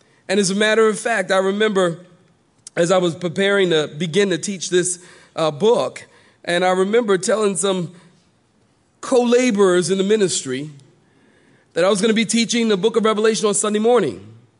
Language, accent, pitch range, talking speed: English, American, 160-225 Hz, 175 wpm